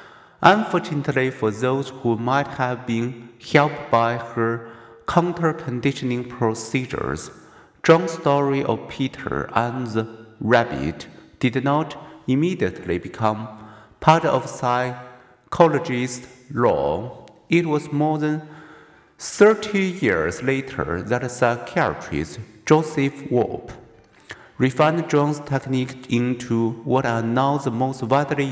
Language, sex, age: Chinese, male, 50-69